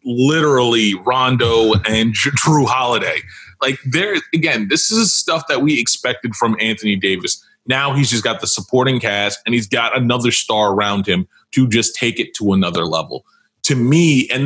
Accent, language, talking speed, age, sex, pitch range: American, English, 170 wpm, 30-49, male, 110-145 Hz